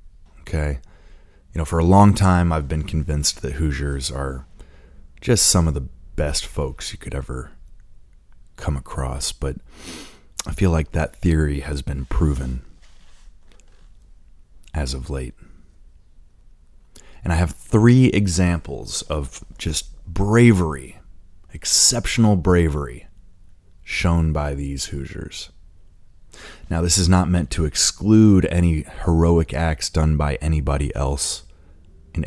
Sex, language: male, English